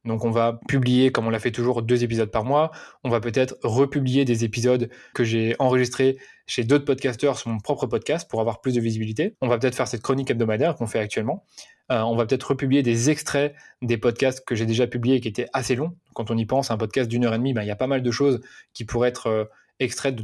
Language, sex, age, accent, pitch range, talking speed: French, male, 20-39, French, 115-130 Hz, 250 wpm